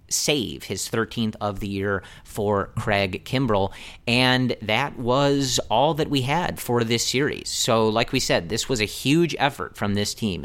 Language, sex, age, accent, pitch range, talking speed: English, male, 30-49, American, 105-130 Hz, 180 wpm